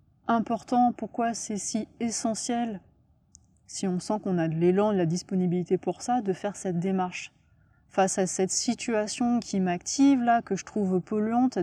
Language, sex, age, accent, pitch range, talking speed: French, female, 20-39, French, 190-225 Hz, 165 wpm